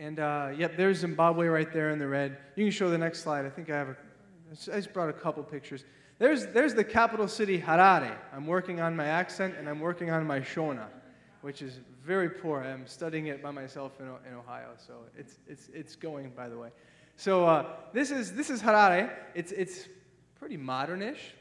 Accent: American